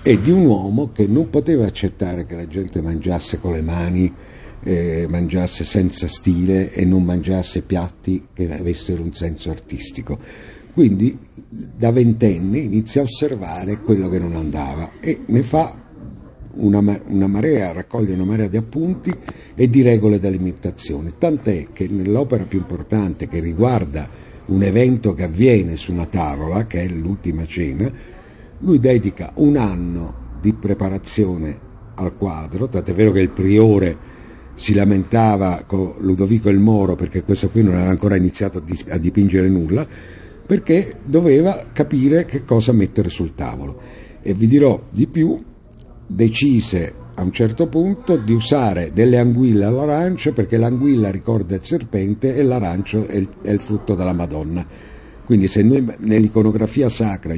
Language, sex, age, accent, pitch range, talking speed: Italian, male, 60-79, native, 90-115 Hz, 145 wpm